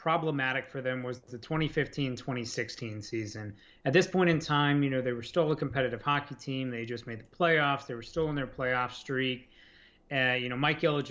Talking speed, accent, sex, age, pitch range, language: 210 wpm, American, male, 30-49, 125-145 Hz, English